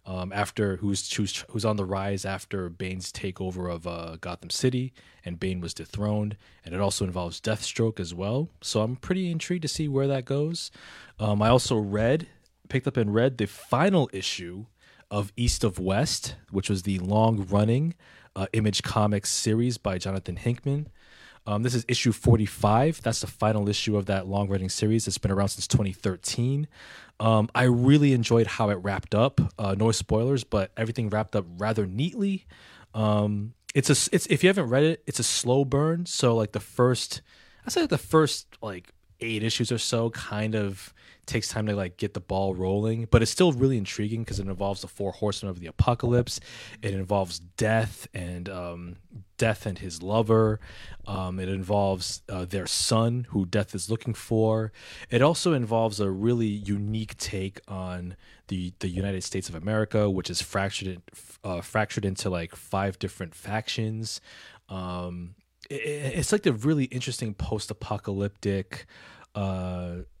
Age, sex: 20-39, male